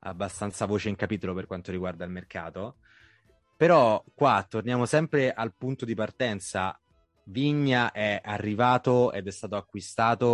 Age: 20-39